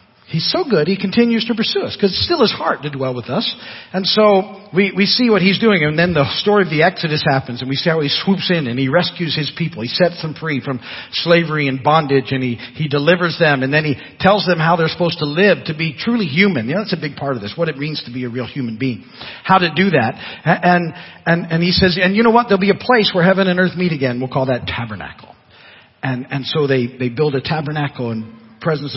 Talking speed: 260 wpm